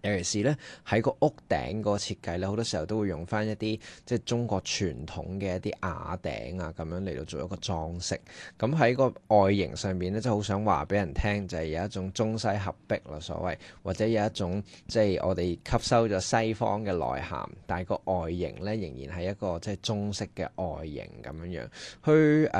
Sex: male